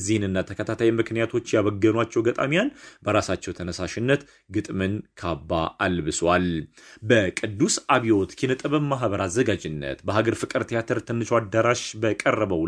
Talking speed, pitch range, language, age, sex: 105 wpm, 90-120 Hz, Amharic, 30-49, male